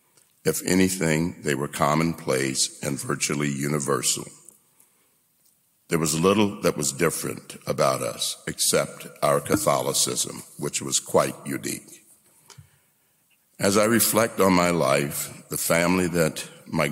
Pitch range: 70-85 Hz